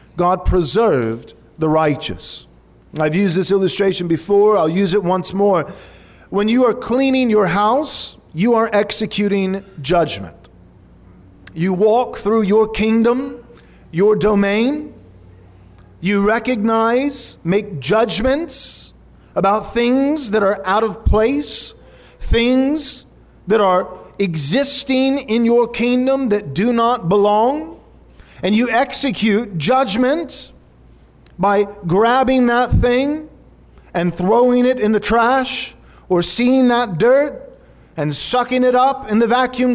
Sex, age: male, 40-59